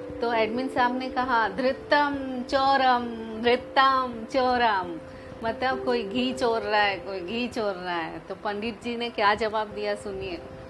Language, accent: Hindi, native